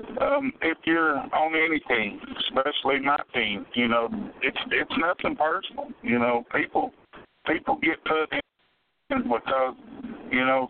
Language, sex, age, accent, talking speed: English, male, 60-79, American, 135 wpm